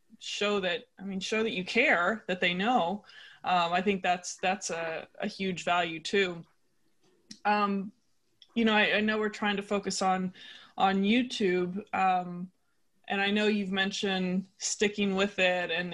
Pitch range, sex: 185-215 Hz, female